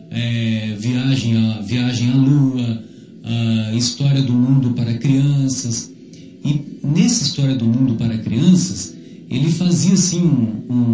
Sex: male